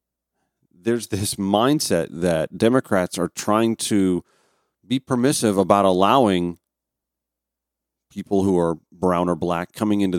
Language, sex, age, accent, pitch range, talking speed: English, male, 40-59, American, 90-145 Hz, 120 wpm